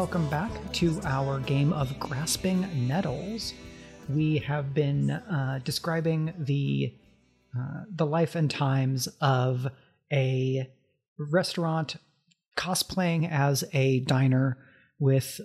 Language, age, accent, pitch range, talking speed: English, 30-49, American, 135-165 Hz, 105 wpm